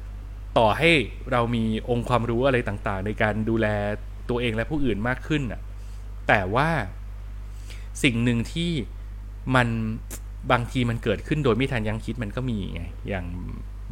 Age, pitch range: 20-39, 100-130 Hz